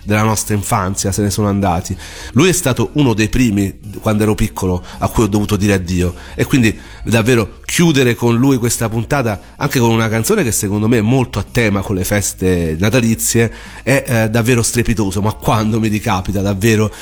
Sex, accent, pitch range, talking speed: male, native, 100-130 Hz, 190 wpm